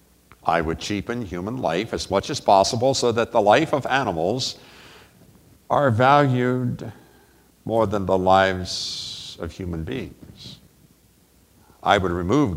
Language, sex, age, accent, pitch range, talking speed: English, male, 60-79, American, 90-120 Hz, 130 wpm